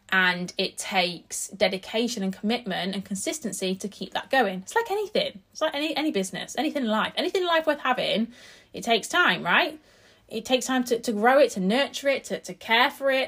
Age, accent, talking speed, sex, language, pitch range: 20-39, British, 210 wpm, female, English, 190-265 Hz